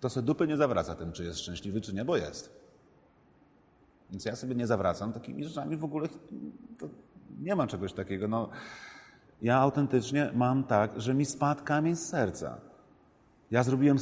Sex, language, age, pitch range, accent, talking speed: male, Polish, 40-59, 95-140 Hz, native, 170 wpm